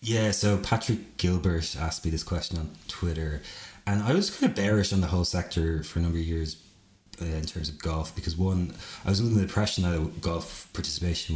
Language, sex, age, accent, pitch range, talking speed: English, male, 20-39, Irish, 80-100 Hz, 210 wpm